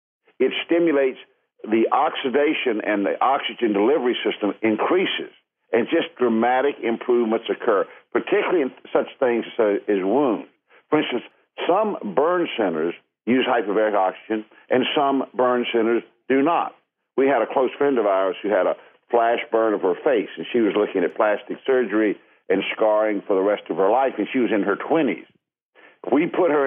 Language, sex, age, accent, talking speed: English, male, 60-79, American, 165 wpm